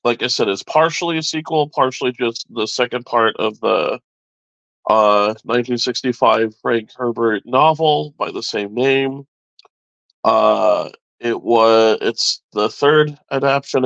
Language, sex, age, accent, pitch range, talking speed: English, male, 40-59, American, 110-135 Hz, 130 wpm